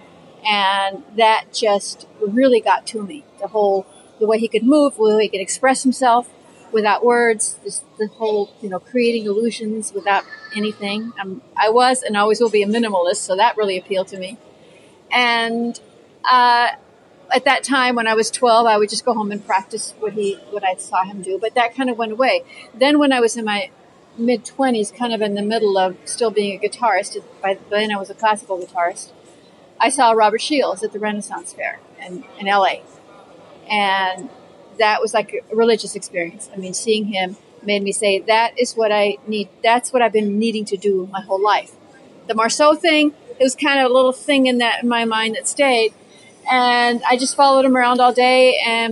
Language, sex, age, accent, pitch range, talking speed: English, female, 40-59, American, 205-245 Hz, 200 wpm